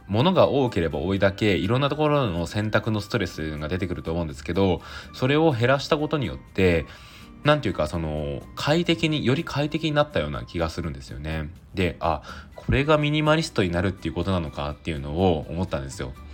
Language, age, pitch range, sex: Japanese, 20-39, 85-120 Hz, male